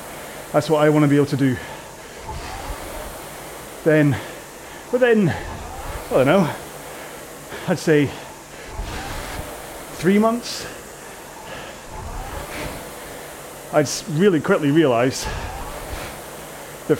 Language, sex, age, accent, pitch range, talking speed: English, male, 30-49, British, 140-160 Hz, 80 wpm